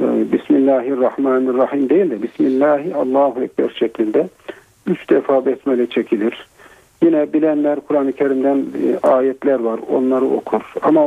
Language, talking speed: Turkish, 105 wpm